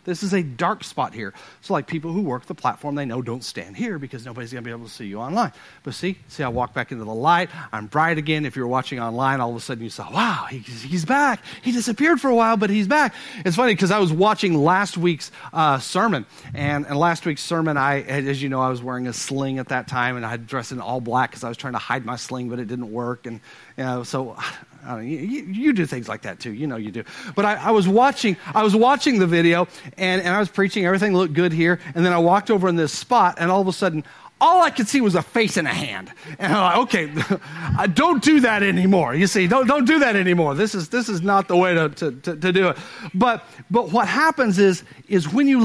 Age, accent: 40-59, American